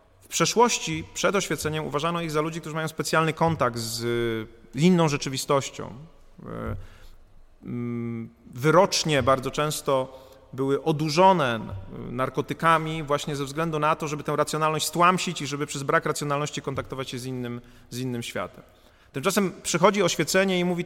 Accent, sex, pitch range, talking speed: native, male, 135-165 Hz, 130 wpm